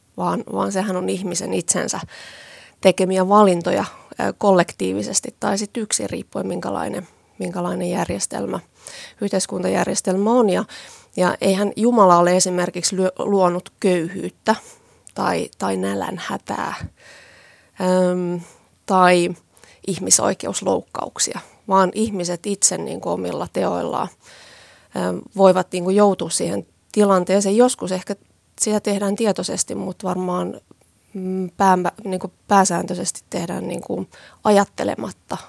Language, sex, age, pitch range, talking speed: Finnish, female, 30-49, 175-200 Hz, 95 wpm